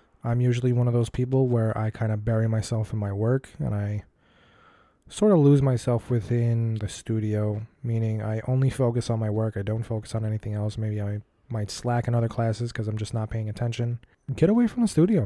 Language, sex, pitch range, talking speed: English, male, 110-140 Hz, 215 wpm